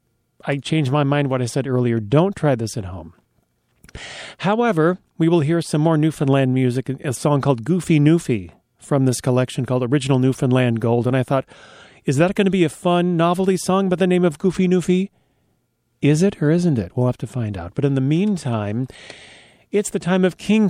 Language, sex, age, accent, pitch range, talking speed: English, male, 40-59, American, 125-170 Hz, 205 wpm